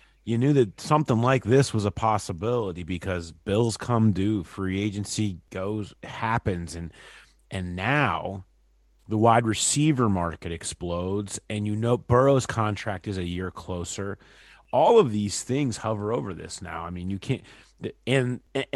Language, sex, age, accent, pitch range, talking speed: English, male, 30-49, American, 95-125 Hz, 150 wpm